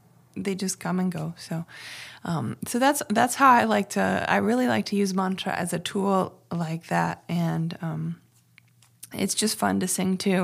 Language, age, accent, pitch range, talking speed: English, 20-39, American, 175-210 Hz, 190 wpm